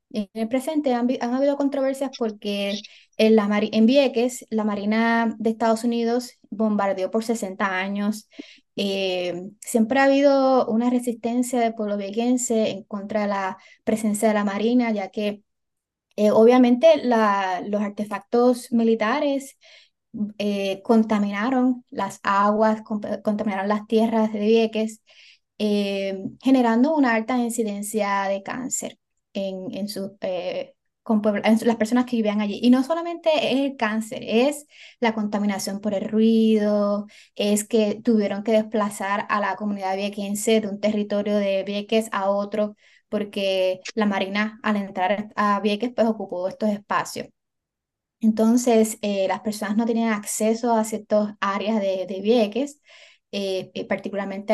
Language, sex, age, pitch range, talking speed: Spanish, female, 20-39, 205-235 Hz, 145 wpm